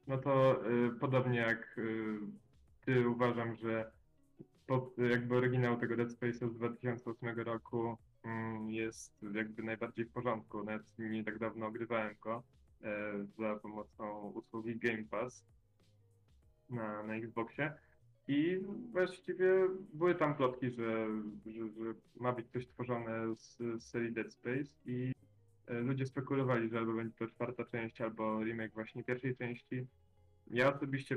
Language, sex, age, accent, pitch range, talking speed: Polish, male, 10-29, native, 110-125 Hz, 140 wpm